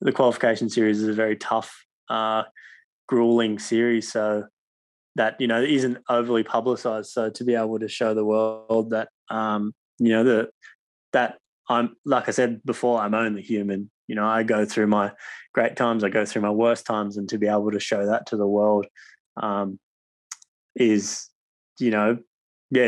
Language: English